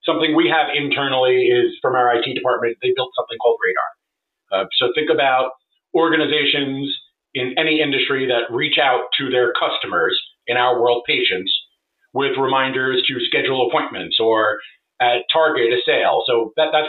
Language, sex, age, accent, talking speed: English, male, 40-59, American, 155 wpm